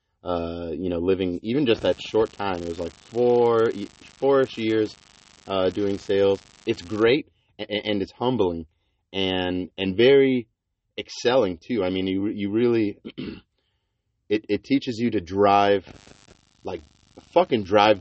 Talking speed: 135 wpm